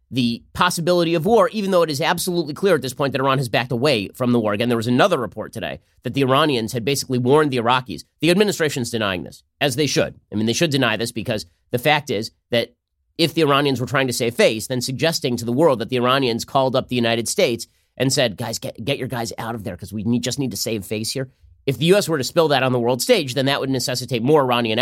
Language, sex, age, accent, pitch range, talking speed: English, male, 30-49, American, 115-145 Hz, 265 wpm